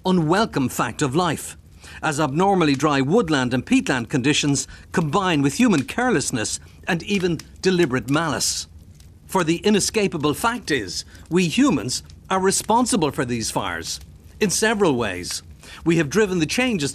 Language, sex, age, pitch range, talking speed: English, male, 60-79, 130-185 Hz, 140 wpm